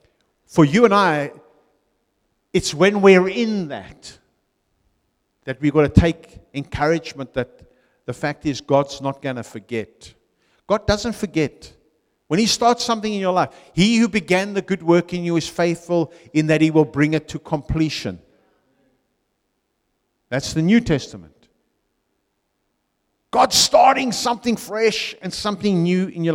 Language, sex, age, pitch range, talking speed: English, male, 50-69, 170-240 Hz, 150 wpm